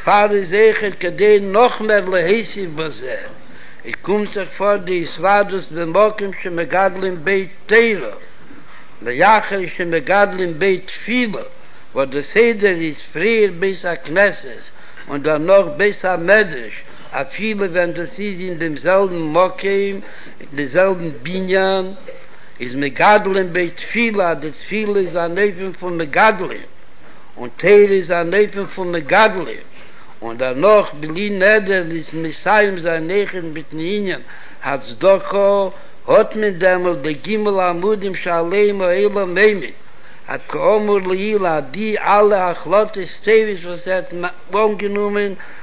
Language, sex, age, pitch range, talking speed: Hebrew, male, 60-79, 175-205 Hz, 105 wpm